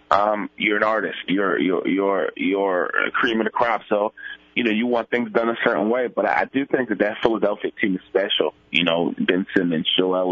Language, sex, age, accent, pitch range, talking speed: English, male, 20-39, American, 100-120 Hz, 220 wpm